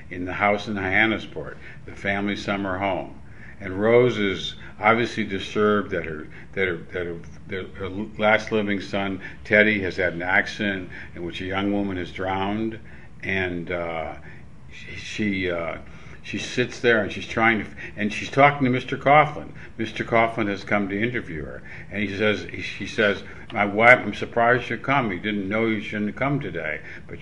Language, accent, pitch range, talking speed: English, American, 95-110 Hz, 185 wpm